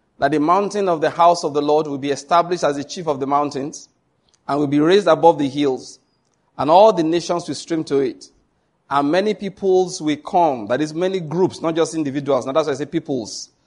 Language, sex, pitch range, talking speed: English, male, 145-180 Hz, 225 wpm